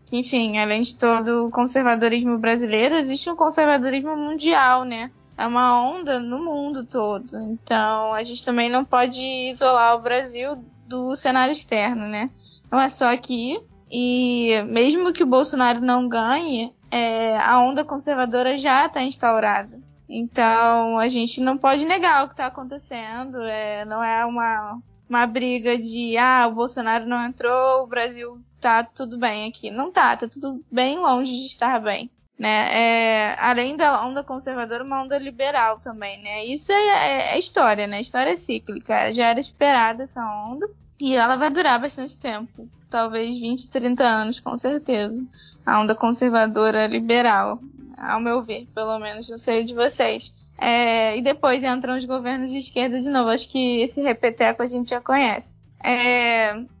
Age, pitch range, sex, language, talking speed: 10-29, 230-265 Hz, female, Portuguese, 160 wpm